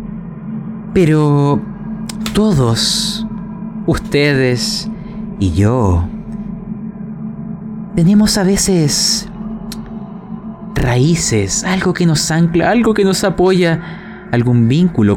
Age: 30-49